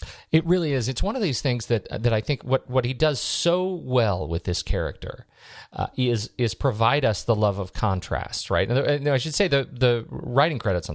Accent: American